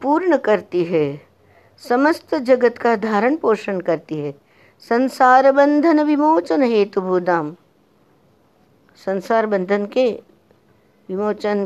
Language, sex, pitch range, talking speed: Hindi, female, 165-235 Hz, 95 wpm